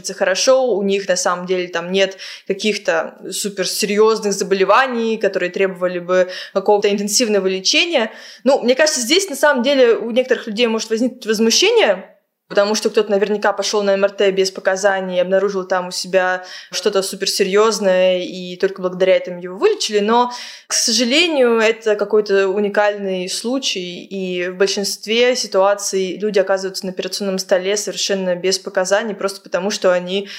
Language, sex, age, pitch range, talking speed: Russian, female, 20-39, 190-235 Hz, 145 wpm